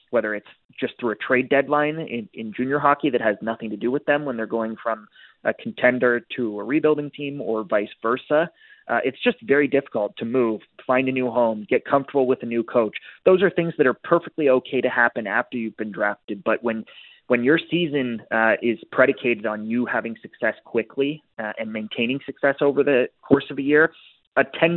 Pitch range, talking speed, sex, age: 115-140 Hz, 210 wpm, male, 20-39